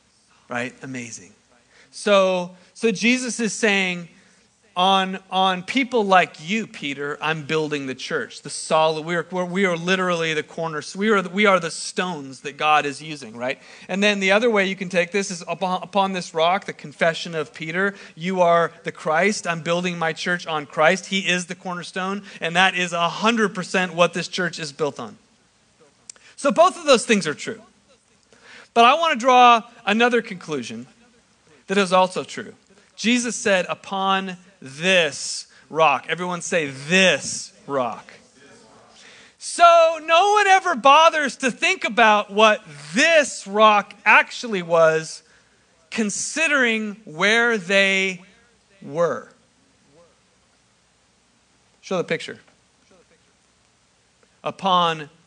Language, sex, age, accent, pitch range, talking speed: English, male, 40-59, American, 165-220 Hz, 135 wpm